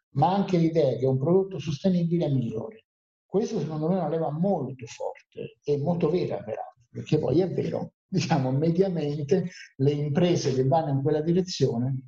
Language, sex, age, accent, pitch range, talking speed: Italian, male, 50-69, native, 130-165 Hz, 170 wpm